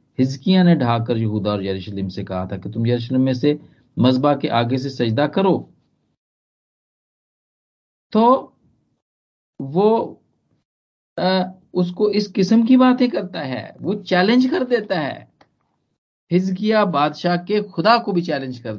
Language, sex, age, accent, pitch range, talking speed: Hindi, male, 50-69, native, 105-160 Hz, 135 wpm